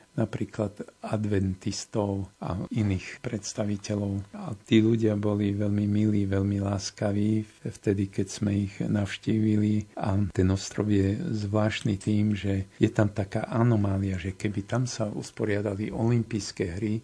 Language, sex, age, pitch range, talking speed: Slovak, male, 50-69, 100-110 Hz, 125 wpm